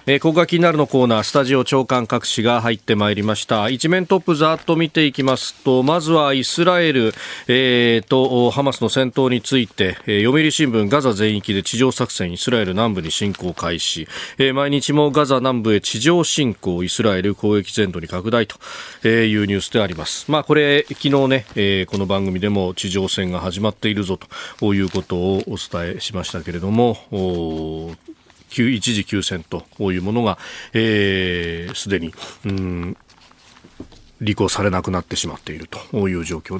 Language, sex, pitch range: Japanese, male, 100-150 Hz